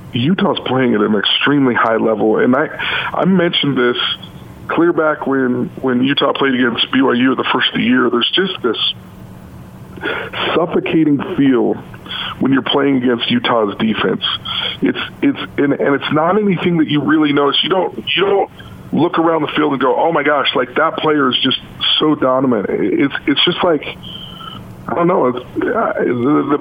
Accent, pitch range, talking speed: American, 130-165 Hz, 170 wpm